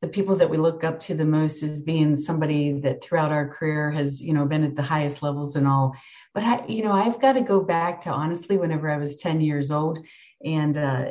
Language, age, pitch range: English, 50-69, 150-195 Hz